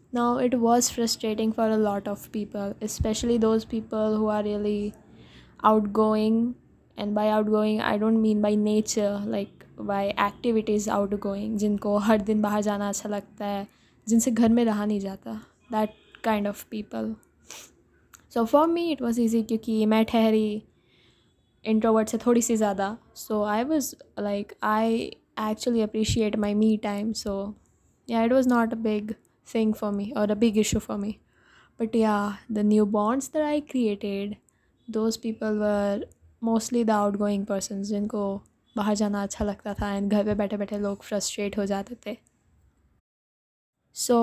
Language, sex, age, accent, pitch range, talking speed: English, female, 10-29, Indian, 205-230 Hz, 135 wpm